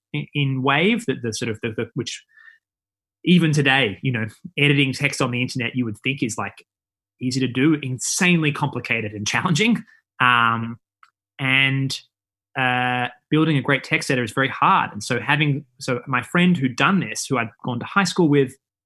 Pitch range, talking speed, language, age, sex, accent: 115-140 Hz, 180 wpm, English, 20-39, male, Australian